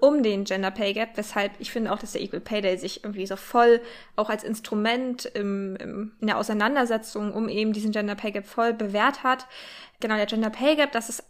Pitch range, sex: 215-255 Hz, female